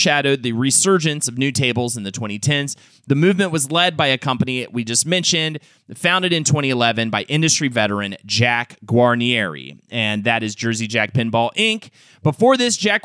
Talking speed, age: 170 wpm, 30-49